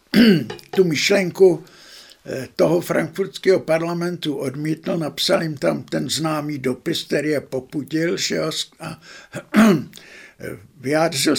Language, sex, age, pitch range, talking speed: Czech, male, 60-79, 140-175 Hz, 110 wpm